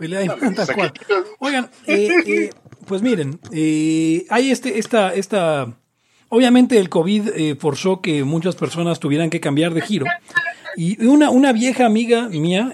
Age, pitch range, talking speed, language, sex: 40-59, 135-195 Hz, 135 wpm, English, male